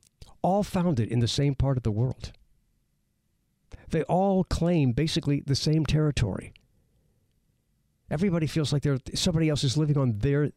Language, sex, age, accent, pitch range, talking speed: English, male, 60-79, American, 110-145 Hz, 140 wpm